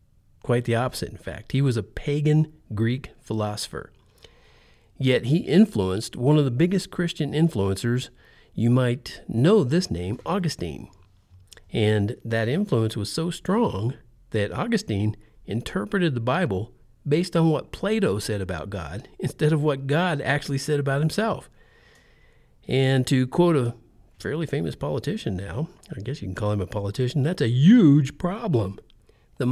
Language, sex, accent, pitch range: English, male, American, 110-150 Hz